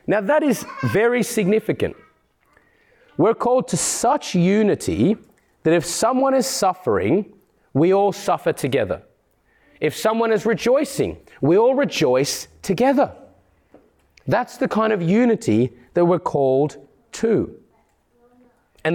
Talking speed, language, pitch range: 115 wpm, English, 135-205 Hz